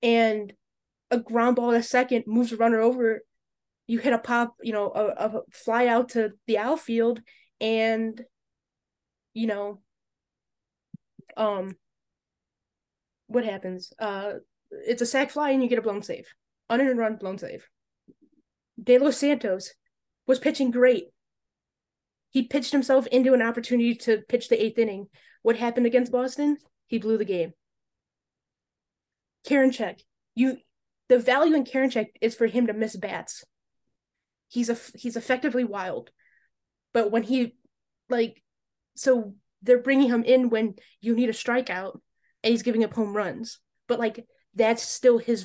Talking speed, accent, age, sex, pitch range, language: 145 wpm, American, 20-39, female, 215-250 Hz, English